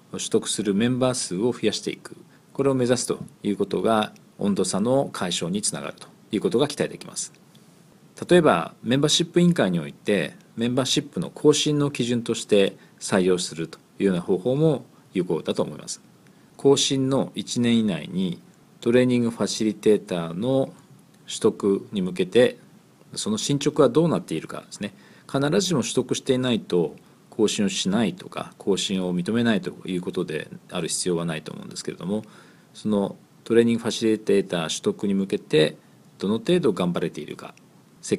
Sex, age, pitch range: male, 40-59, 100-140 Hz